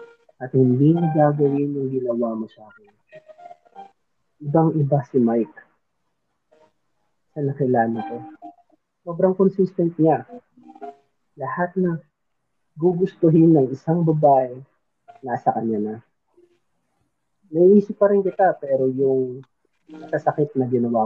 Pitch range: 130-190 Hz